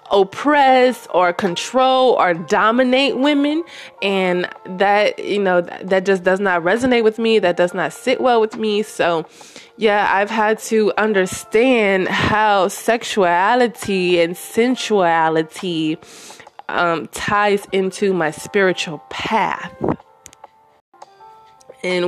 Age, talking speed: 20-39, 115 wpm